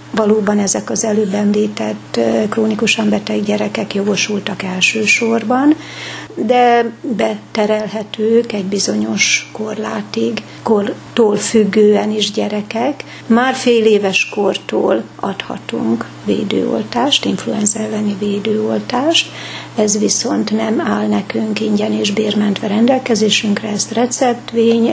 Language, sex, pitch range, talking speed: Hungarian, female, 210-230 Hz, 95 wpm